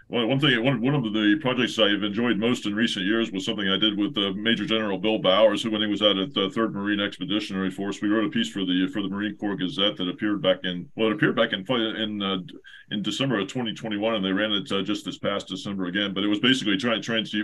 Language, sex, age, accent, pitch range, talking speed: English, male, 40-59, American, 95-115 Hz, 260 wpm